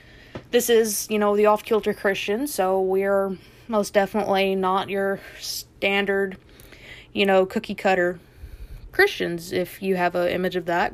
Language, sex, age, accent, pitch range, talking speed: English, female, 20-39, American, 180-210 Hz, 135 wpm